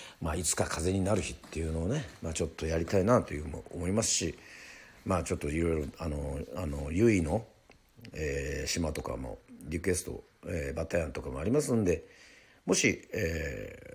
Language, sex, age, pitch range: Japanese, male, 50-69, 75-110 Hz